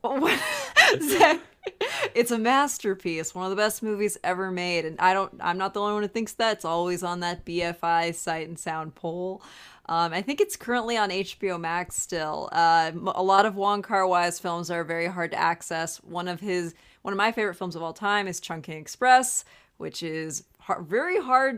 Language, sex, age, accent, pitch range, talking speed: English, female, 20-39, American, 175-210 Hz, 195 wpm